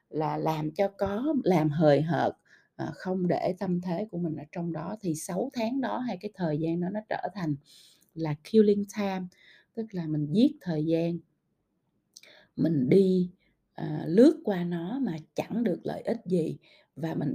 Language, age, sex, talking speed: Vietnamese, 20-39, female, 175 wpm